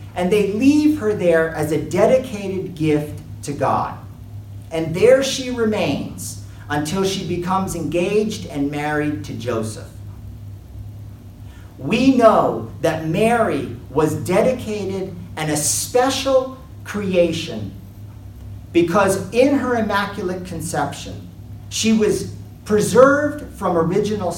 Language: English